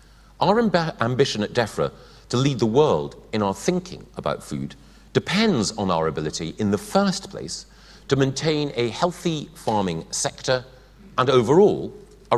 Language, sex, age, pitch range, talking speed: English, male, 40-59, 100-165 Hz, 145 wpm